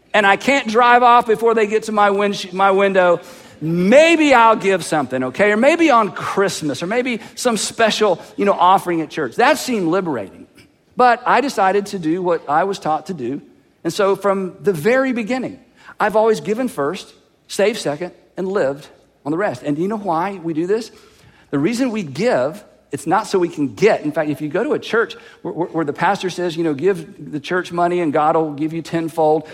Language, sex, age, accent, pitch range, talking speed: English, male, 50-69, American, 175-245 Hz, 210 wpm